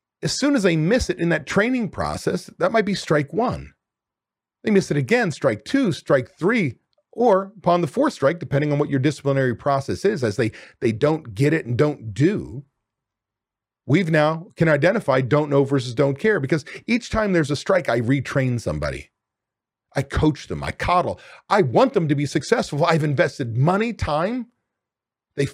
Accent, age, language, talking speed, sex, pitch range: American, 40-59, English, 185 wpm, male, 130-170 Hz